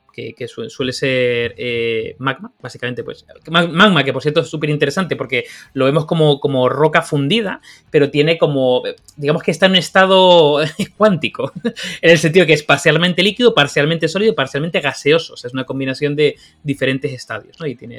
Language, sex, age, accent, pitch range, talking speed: Spanish, male, 30-49, Spanish, 130-180 Hz, 185 wpm